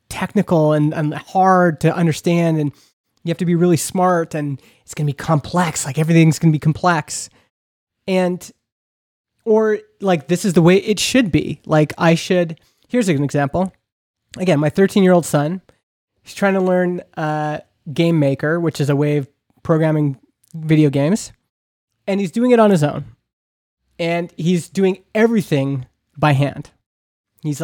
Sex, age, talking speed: male, 20-39, 160 wpm